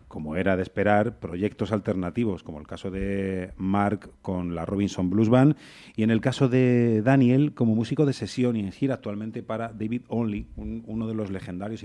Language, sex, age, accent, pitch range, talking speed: Spanish, male, 30-49, Spanish, 95-115 Hz, 185 wpm